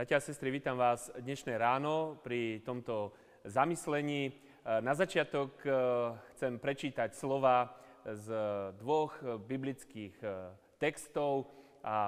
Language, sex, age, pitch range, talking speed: Slovak, male, 30-49, 110-145 Hz, 95 wpm